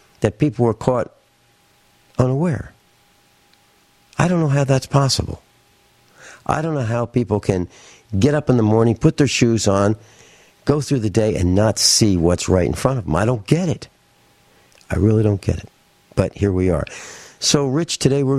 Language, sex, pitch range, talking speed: English, male, 100-135 Hz, 185 wpm